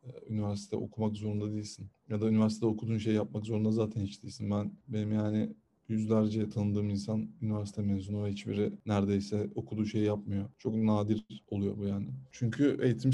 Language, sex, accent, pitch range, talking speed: Turkish, male, native, 105-115 Hz, 160 wpm